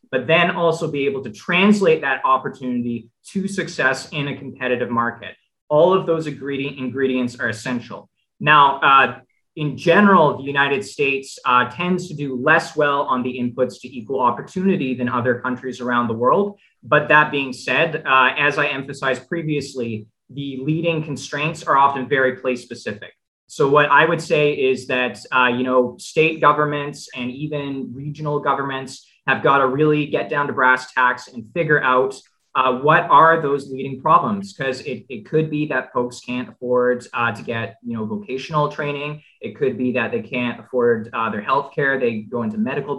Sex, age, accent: male, 20-39, American